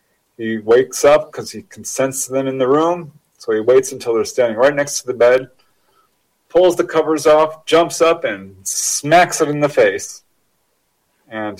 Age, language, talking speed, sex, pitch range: 40-59, English, 180 wpm, male, 120-160 Hz